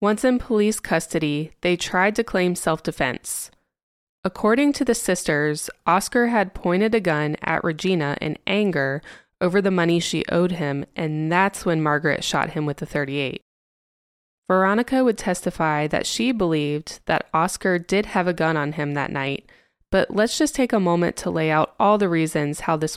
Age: 20-39